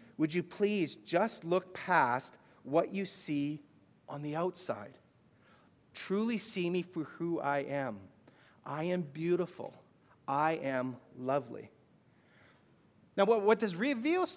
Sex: male